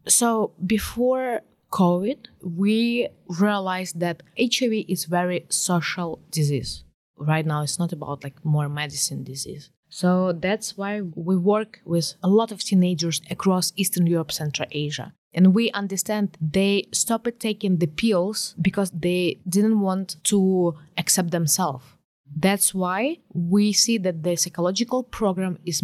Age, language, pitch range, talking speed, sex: 20-39, English, 165-200 Hz, 135 wpm, female